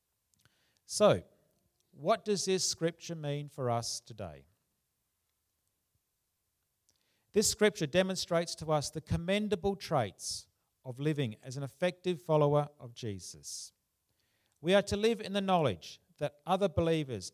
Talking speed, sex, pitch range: 120 wpm, male, 115-170 Hz